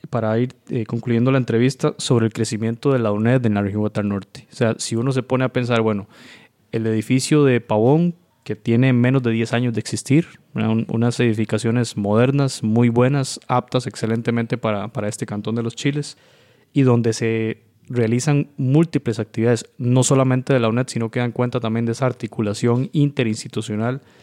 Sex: male